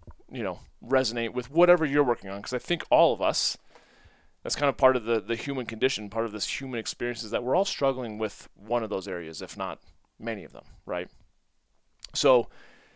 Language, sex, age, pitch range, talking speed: English, male, 30-49, 110-145 Hz, 210 wpm